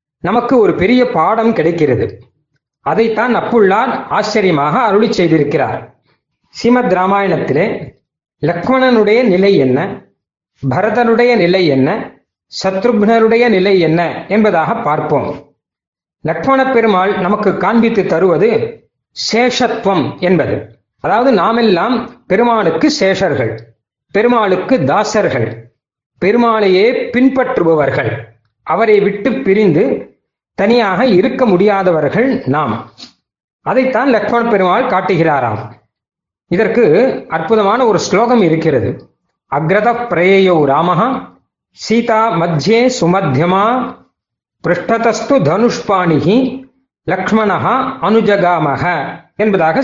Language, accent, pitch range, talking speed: Tamil, native, 165-235 Hz, 65 wpm